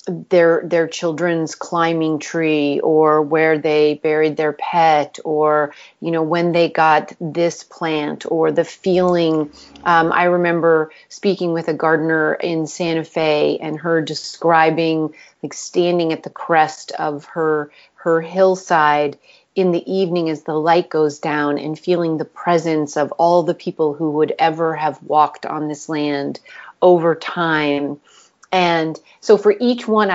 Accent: American